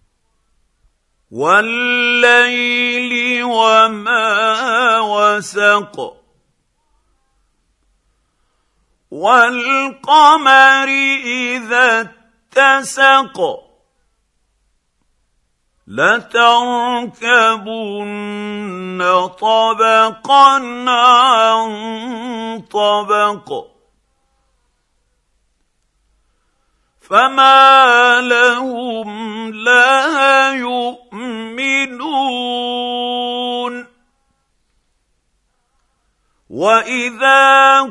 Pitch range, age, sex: 220-270 Hz, 50-69, male